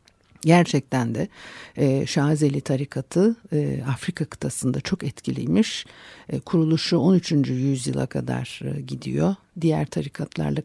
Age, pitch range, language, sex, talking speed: 60-79, 140-165 Hz, Turkish, female, 85 wpm